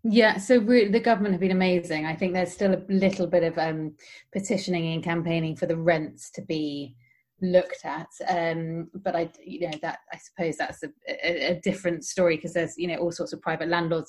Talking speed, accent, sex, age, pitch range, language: 205 wpm, British, female, 30-49, 165-195 Hz, English